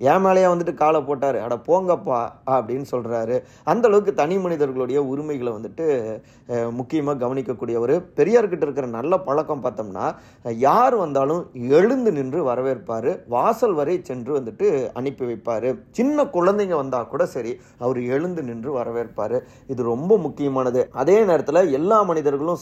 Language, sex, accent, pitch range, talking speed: Tamil, male, native, 125-165 Hz, 130 wpm